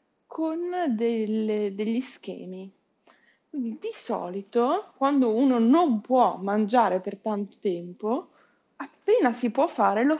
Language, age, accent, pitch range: Italian, 20-39, native, 195-250 Hz